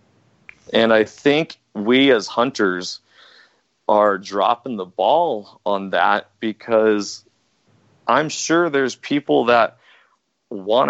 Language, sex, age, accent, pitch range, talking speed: English, male, 30-49, American, 100-120 Hz, 105 wpm